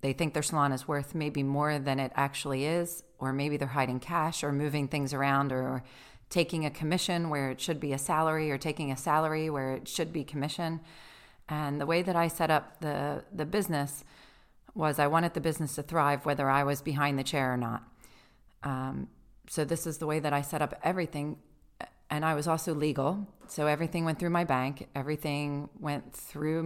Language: English